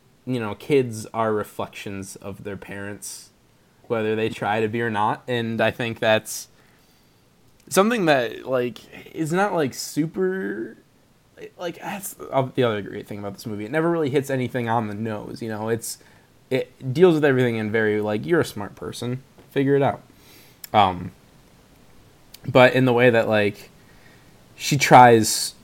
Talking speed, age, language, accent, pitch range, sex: 160 wpm, 20-39, English, American, 105-130 Hz, male